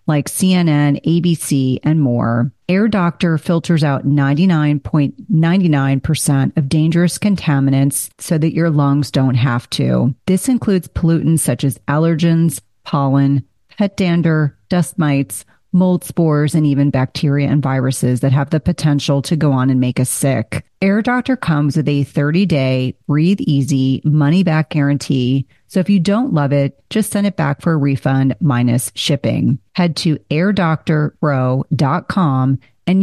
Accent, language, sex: American, English, female